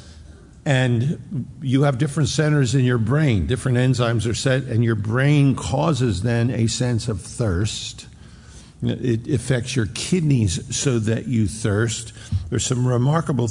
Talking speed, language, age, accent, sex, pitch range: 140 wpm, English, 50-69, American, male, 110-130 Hz